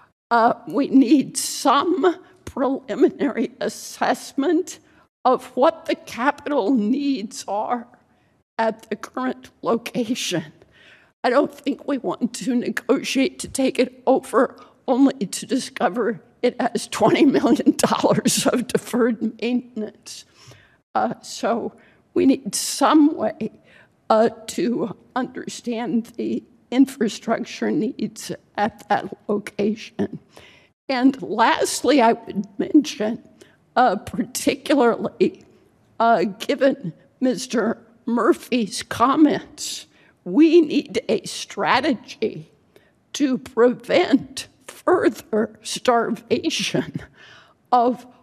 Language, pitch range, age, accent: English, 220-275 Hz, 50-69, American